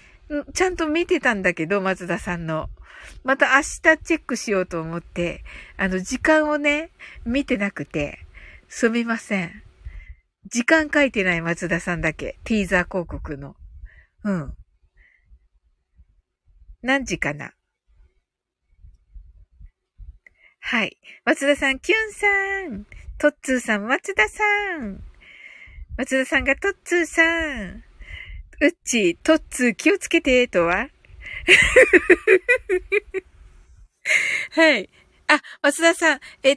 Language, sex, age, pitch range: Japanese, female, 50-69, 190-300 Hz